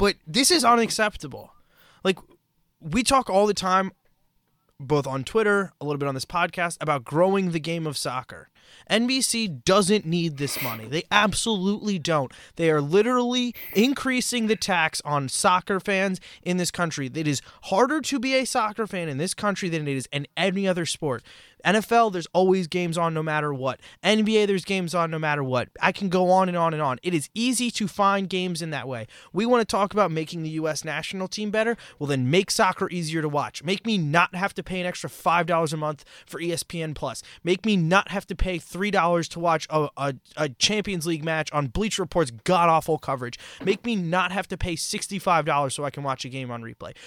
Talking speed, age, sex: 205 wpm, 20-39, male